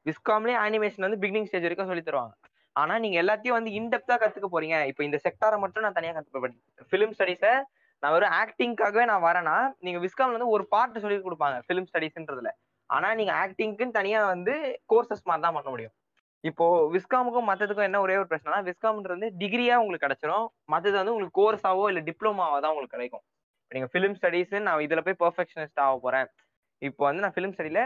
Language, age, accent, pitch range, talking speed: Tamil, 20-39, native, 155-215 Hz, 175 wpm